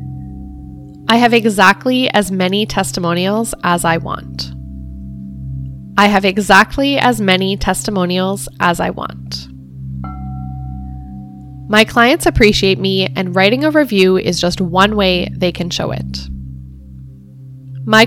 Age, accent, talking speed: 10-29, American, 115 wpm